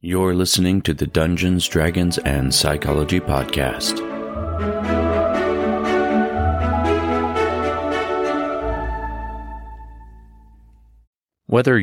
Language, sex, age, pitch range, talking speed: English, male, 30-49, 75-90 Hz, 50 wpm